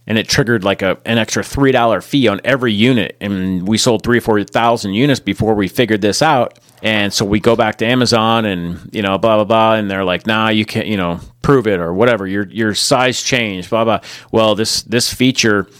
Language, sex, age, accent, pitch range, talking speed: English, male, 30-49, American, 105-125 Hz, 225 wpm